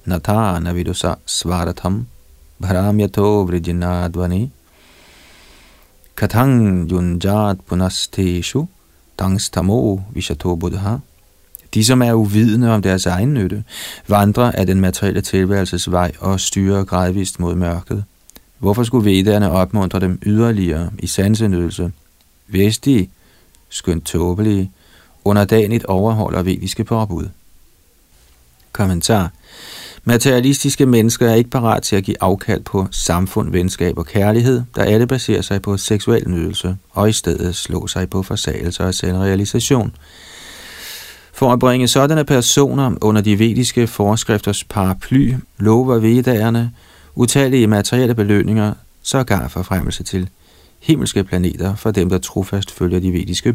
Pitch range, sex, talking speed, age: 90-110 Hz, male, 105 wpm, 40-59